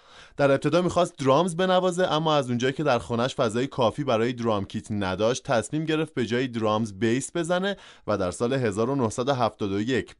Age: 20-39